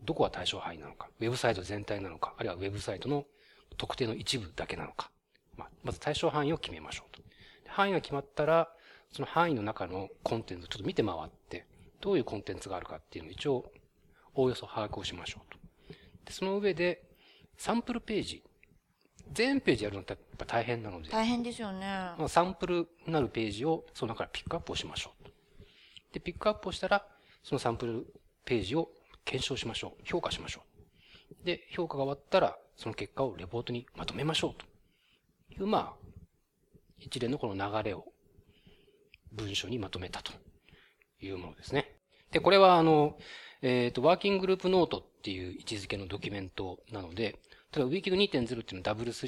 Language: Japanese